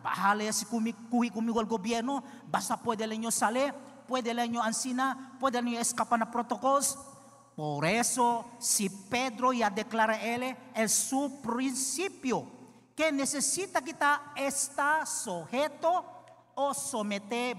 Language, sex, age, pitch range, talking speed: English, male, 50-69, 230-295 Hz, 145 wpm